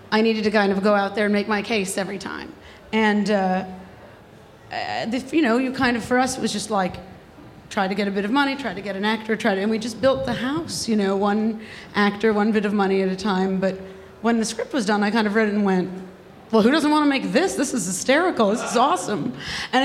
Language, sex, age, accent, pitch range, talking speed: English, female, 40-59, American, 195-230 Hz, 260 wpm